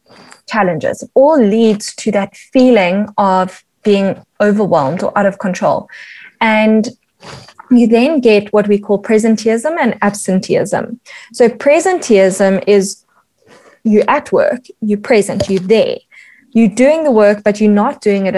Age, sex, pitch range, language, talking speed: 20-39, female, 200-240 Hz, English, 135 wpm